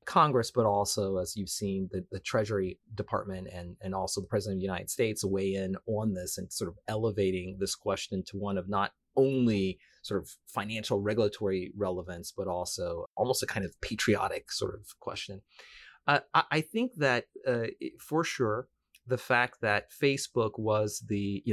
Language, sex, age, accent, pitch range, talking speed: English, male, 30-49, American, 95-120 Hz, 180 wpm